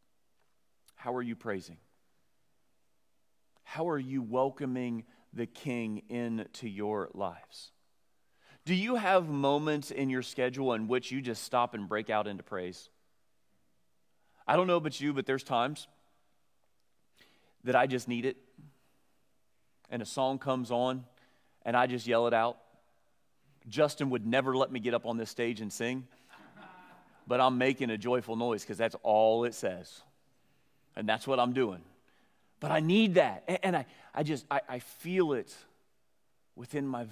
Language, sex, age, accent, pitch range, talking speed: English, male, 40-59, American, 110-135 Hz, 155 wpm